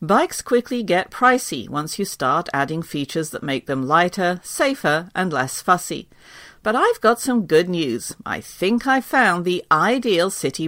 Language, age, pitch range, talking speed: English, 50-69, 150-215 Hz, 170 wpm